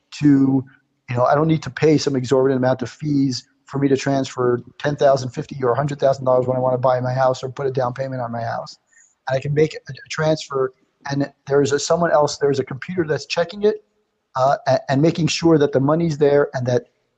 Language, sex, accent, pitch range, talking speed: English, male, American, 130-155 Hz, 215 wpm